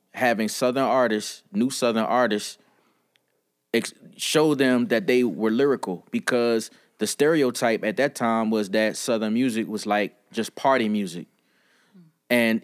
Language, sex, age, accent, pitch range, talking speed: English, male, 20-39, American, 105-125 Hz, 140 wpm